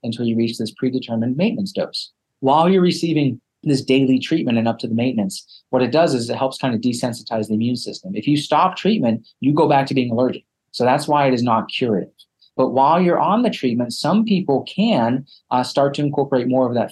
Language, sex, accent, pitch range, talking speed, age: English, male, American, 105-135 Hz, 225 wpm, 30-49